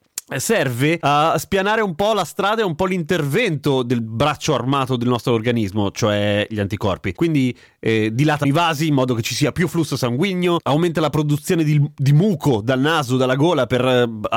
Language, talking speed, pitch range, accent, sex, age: Italian, 190 wpm, 125-165 Hz, native, male, 30-49